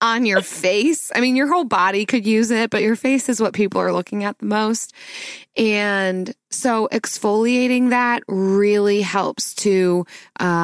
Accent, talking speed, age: American, 170 wpm, 20-39